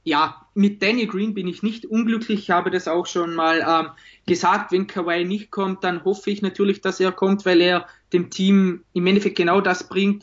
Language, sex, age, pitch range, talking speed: German, male, 20-39, 180-205 Hz, 210 wpm